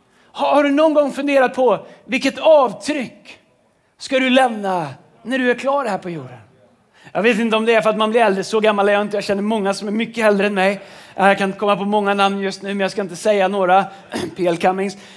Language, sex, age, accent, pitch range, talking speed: Swedish, male, 30-49, native, 200-270 Hz, 235 wpm